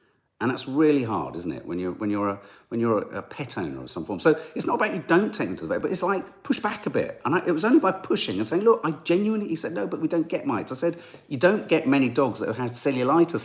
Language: English